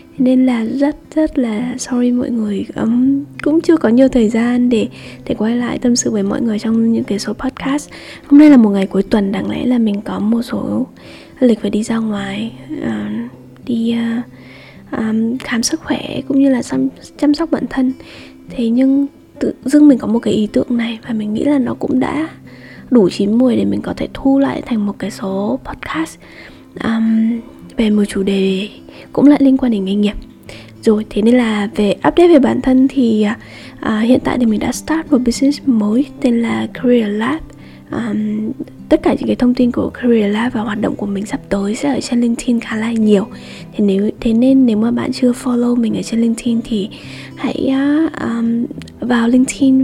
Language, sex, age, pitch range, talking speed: Vietnamese, female, 10-29, 215-265 Hz, 210 wpm